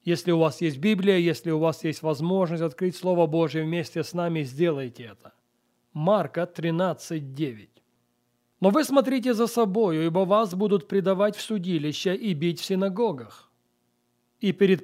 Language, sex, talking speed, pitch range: Russian, male, 150 wpm, 160-200 Hz